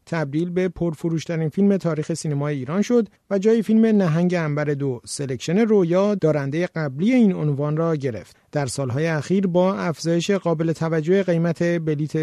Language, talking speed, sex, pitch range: Persian, 155 wpm, male, 150-185 Hz